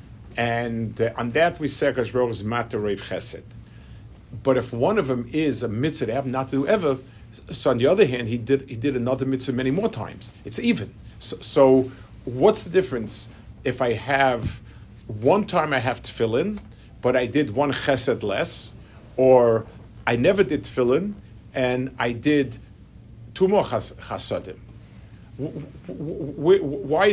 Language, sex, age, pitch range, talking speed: English, male, 50-69, 110-140 Hz, 135 wpm